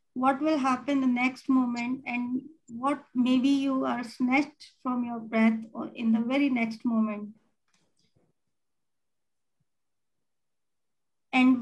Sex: female